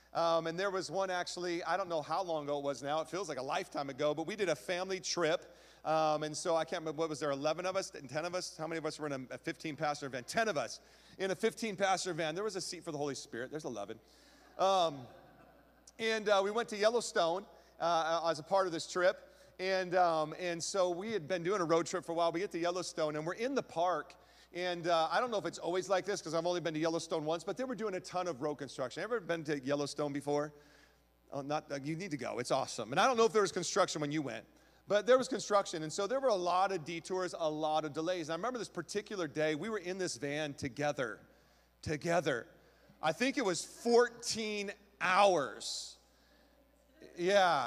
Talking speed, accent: 245 wpm, American